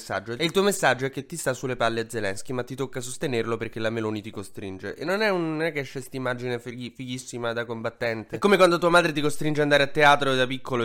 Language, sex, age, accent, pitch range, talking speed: Italian, male, 20-39, native, 125-165 Hz, 265 wpm